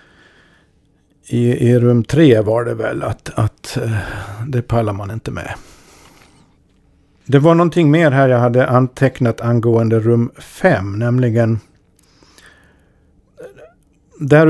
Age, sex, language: 50-69, male, Swedish